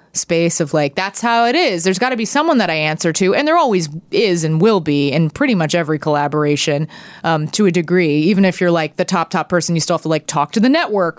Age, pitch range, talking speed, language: 20-39, 160-195 Hz, 265 wpm, English